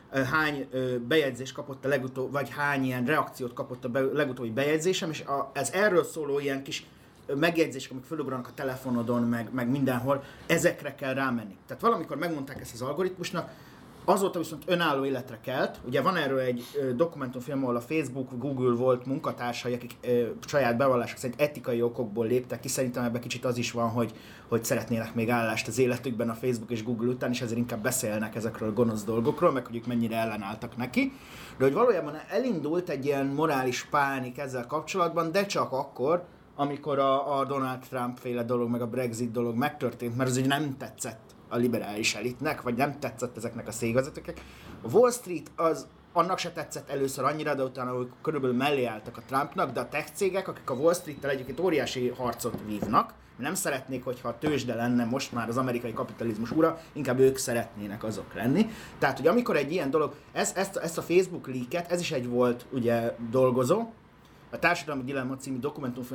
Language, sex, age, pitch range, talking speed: Hungarian, male, 30-49, 120-145 Hz, 180 wpm